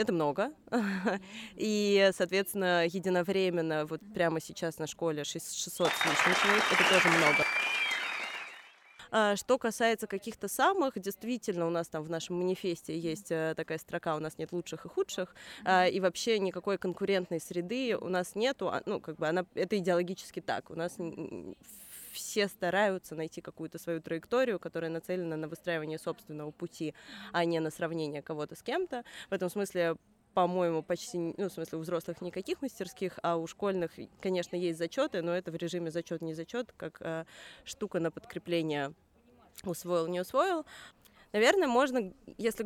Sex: female